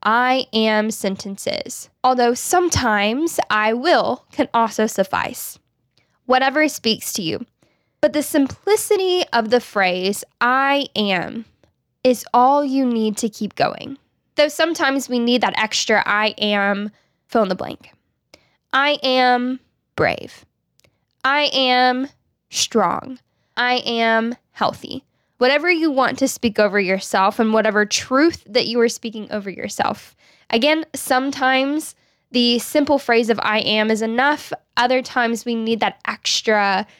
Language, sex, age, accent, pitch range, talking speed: English, female, 10-29, American, 215-270 Hz, 135 wpm